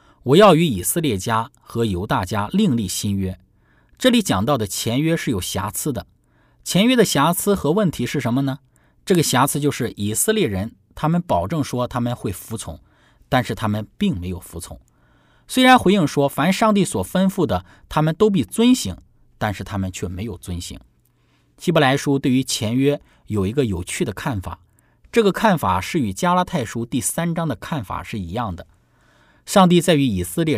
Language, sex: Chinese, male